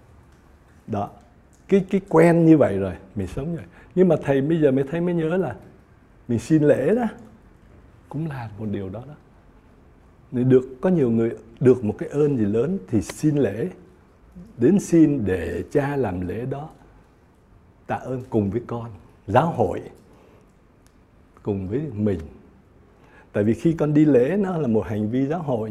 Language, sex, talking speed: Vietnamese, male, 170 wpm